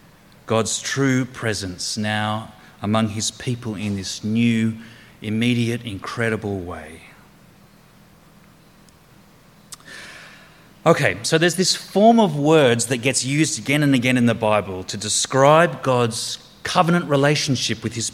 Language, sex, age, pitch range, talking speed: English, male, 30-49, 110-140 Hz, 120 wpm